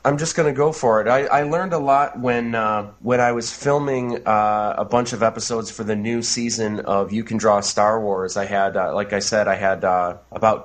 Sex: male